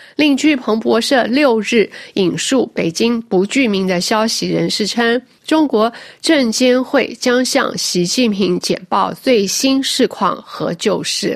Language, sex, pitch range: Chinese, female, 190-265 Hz